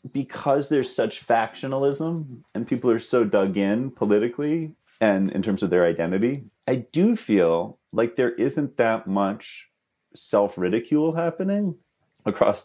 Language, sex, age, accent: English, male, 30-49, American